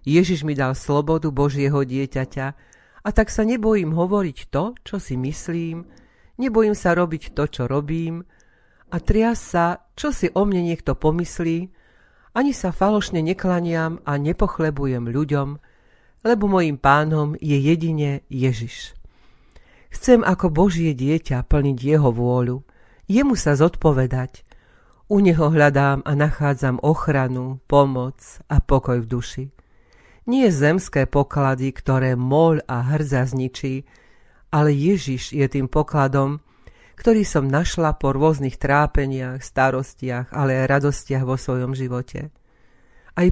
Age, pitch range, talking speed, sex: 50-69, 135-170 Hz, 125 wpm, female